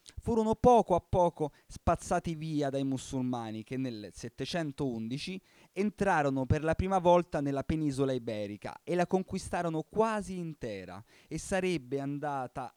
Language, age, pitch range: Italian, 30-49, 120-165 Hz